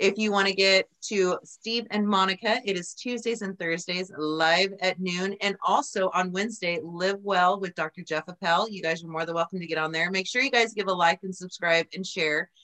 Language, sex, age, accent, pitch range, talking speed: English, female, 30-49, American, 170-215 Hz, 230 wpm